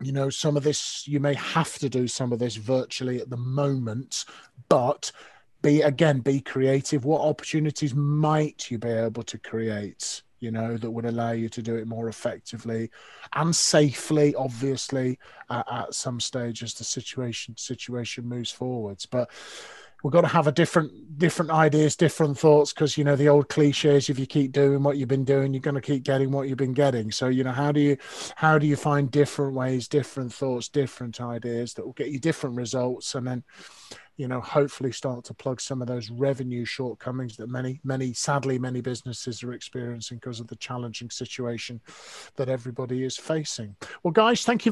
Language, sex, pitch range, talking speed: English, male, 125-165 Hz, 190 wpm